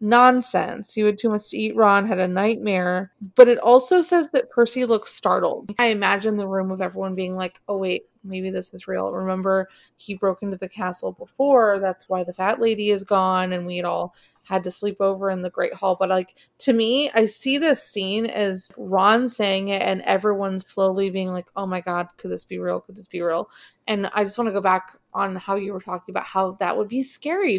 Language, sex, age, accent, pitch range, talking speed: English, female, 20-39, American, 190-245 Hz, 230 wpm